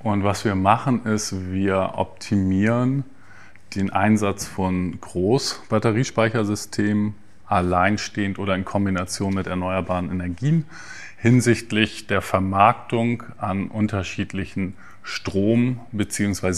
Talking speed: 90 wpm